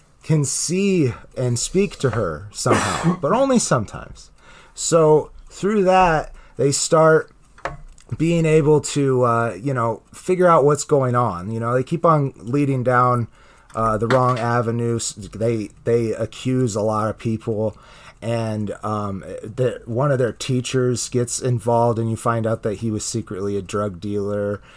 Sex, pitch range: male, 110-140 Hz